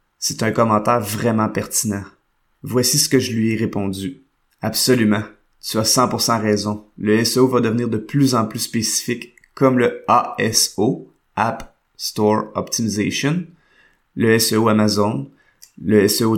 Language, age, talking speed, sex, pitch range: French, 30-49, 135 wpm, male, 105-120 Hz